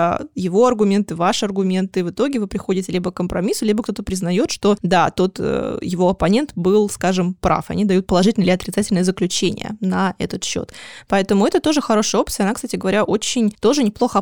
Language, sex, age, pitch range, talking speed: Russian, female, 20-39, 180-220 Hz, 175 wpm